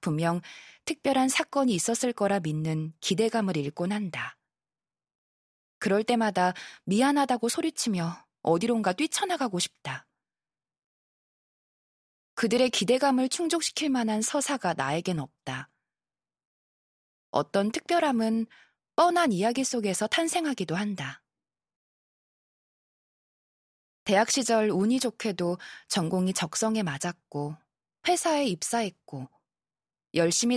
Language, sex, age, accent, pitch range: Korean, female, 20-39, native, 170-265 Hz